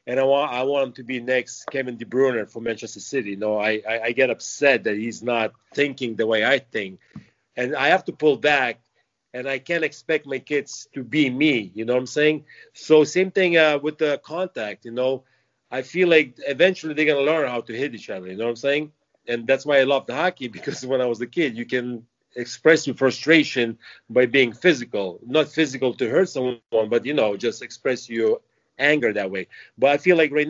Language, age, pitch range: English, 40-59, 115-145 Hz